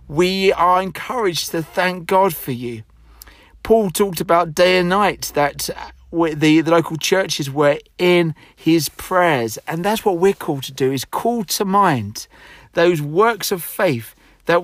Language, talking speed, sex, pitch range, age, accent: English, 155 wpm, male, 150-185 Hz, 40-59, British